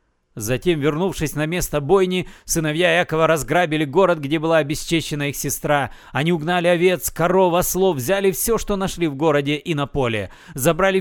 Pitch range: 140-190 Hz